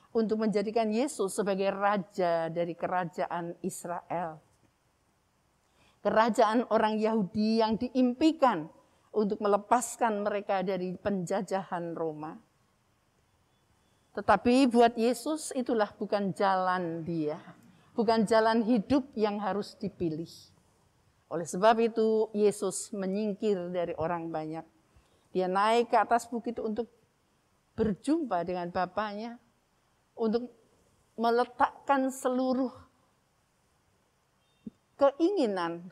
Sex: female